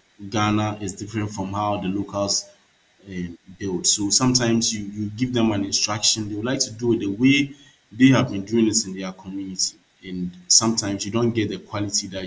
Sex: male